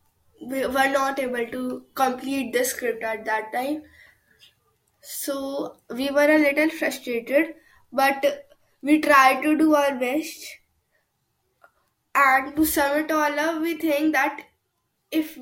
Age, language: 10-29, English